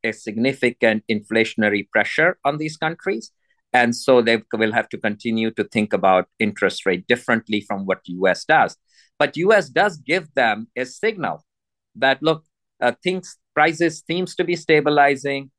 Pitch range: 110-150 Hz